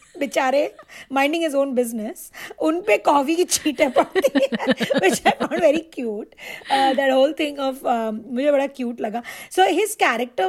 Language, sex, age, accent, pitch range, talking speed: Hindi, female, 20-39, native, 215-270 Hz, 95 wpm